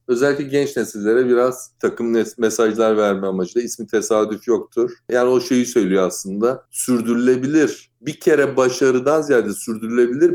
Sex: male